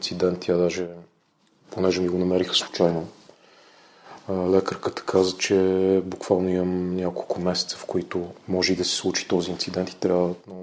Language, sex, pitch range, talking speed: Bulgarian, male, 90-100 Hz, 140 wpm